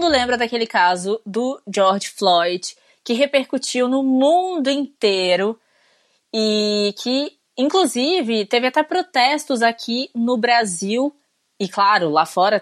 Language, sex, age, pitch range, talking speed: Portuguese, female, 20-39, 215-275 Hz, 115 wpm